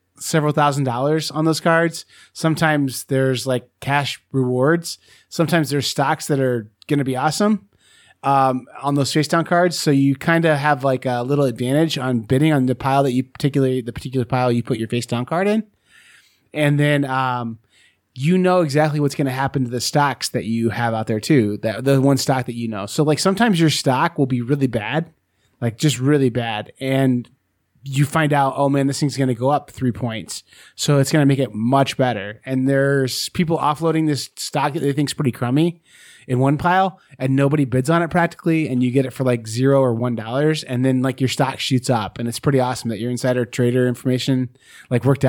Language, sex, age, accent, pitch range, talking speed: English, male, 20-39, American, 125-155 Hz, 215 wpm